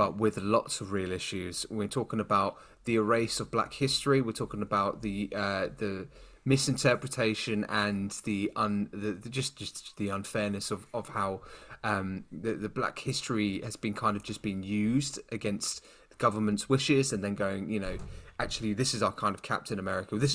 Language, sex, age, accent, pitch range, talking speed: English, male, 20-39, British, 105-130 Hz, 185 wpm